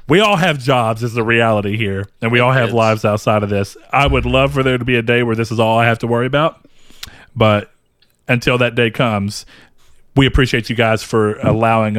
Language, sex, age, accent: English, male, 40-59, American